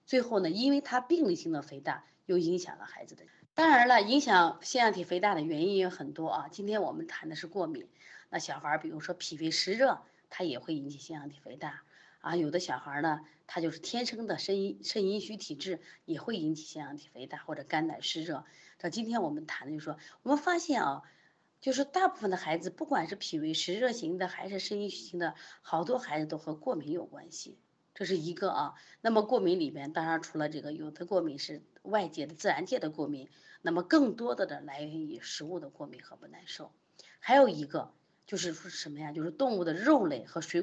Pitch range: 155-235 Hz